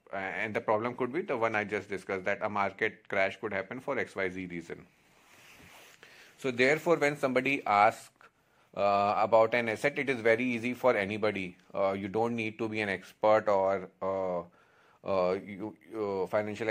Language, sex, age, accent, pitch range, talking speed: Hindi, male, 30-49, native, 95-115 Hz, 170 wpm